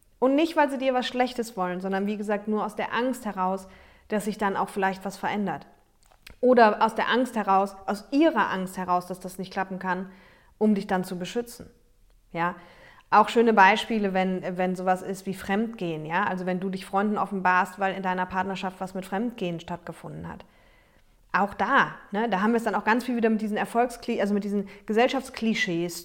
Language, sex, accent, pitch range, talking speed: German, female, German, 185-225 Hz, 200 wpm